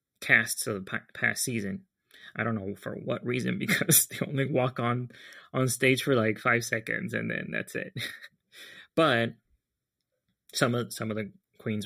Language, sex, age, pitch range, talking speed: English, male, 20-39, 105-130 Hz, 165 wpm